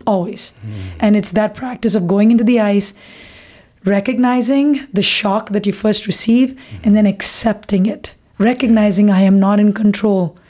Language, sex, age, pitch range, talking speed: English, female, 20-39, 195-230 Hz, 155 wpm